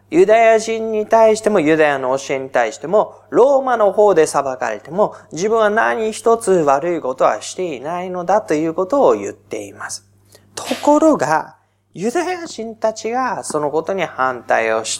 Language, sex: Japanese, male